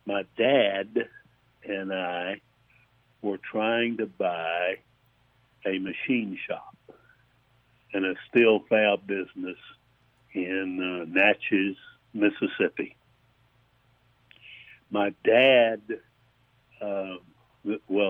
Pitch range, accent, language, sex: 100-125 Hz, American, English, male